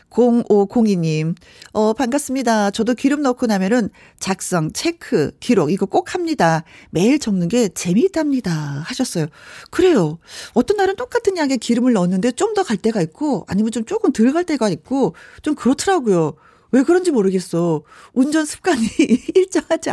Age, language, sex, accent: 40-59, Korean, female, native